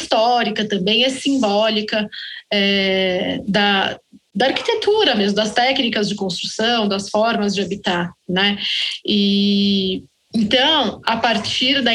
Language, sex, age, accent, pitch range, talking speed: Portuguese, female, 20-39, Brazilian, 200-245 Hz, 110 wpm